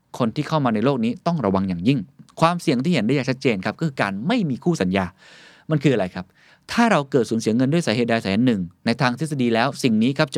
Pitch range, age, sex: 115-160 Hz, 20-39, male